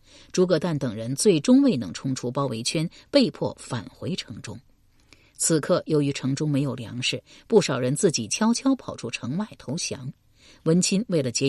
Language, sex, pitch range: Chinese, female, 130-205 Hz